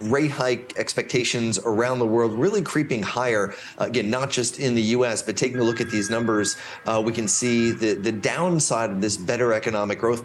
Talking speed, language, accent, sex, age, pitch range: 205 wpm, English, American, male, 30-49, 105-130 Hz